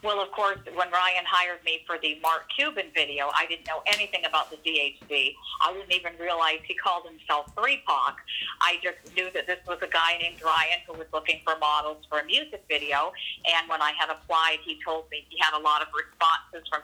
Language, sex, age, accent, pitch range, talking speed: English, female, 50-69, American, 155-175 Hz, 215 wpm